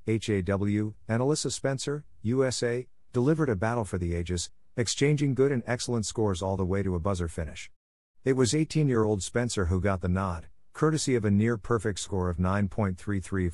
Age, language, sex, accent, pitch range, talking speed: 50-69, English, male, American, 90-115 Hz, 170 wpm